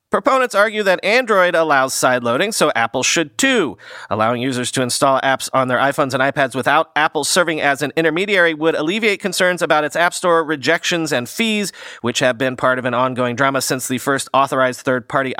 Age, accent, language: 40-59, American, English